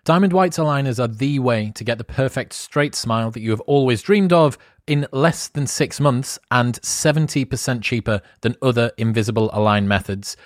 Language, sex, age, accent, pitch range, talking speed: English, male, 30-49, British, 115-140 Hz, 180 wpm